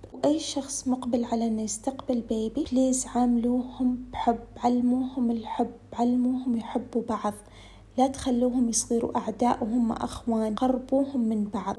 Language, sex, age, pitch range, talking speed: Arabic, female, 20-39, 235-260 Hz, 120 wpm